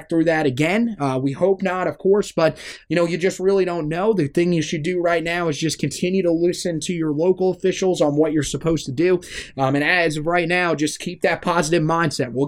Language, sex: English, male